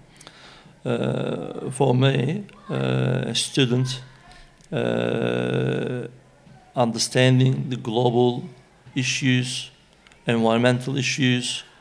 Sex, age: male, 50-69